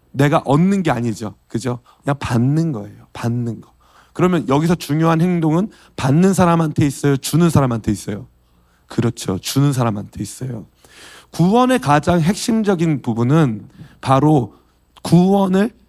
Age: 30-49